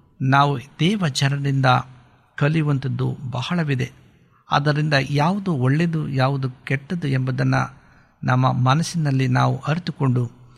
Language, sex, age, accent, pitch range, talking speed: Polish, male, 60-79, Indian, 125-145 Hz, 135 wpm